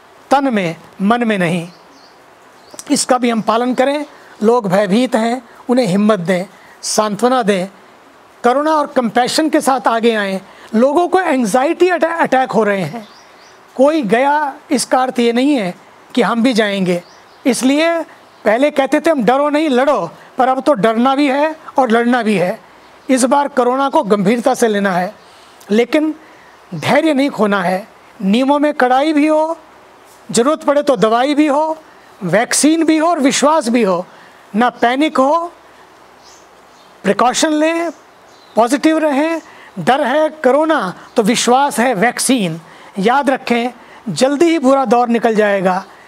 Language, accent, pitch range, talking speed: English, Indian, 220-290 Hz, 130 wpm